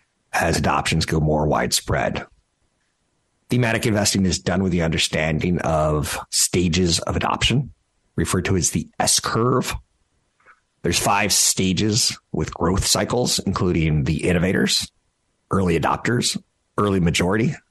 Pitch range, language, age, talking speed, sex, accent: 90-110 Hz, English, 50-69, 120 wpm, male, American